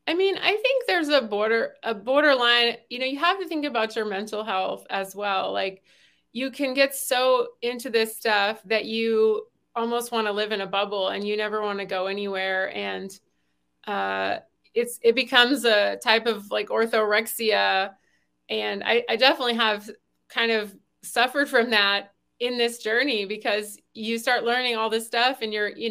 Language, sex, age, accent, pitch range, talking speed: English, female, 30-49, American, 205-255 Hz, 180 wpm